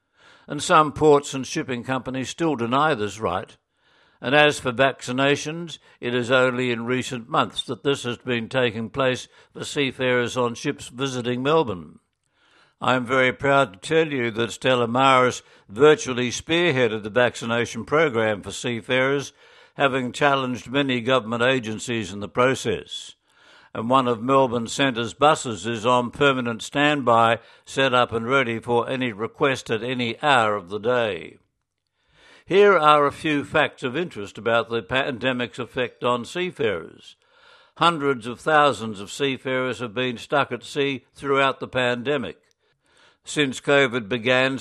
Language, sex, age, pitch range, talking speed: English, male, 60-79, 120-140 Hz, 145 wpm